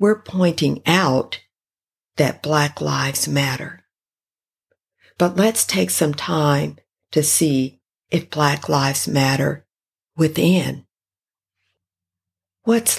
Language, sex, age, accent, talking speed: English, female, 50-69, American, 90 wpm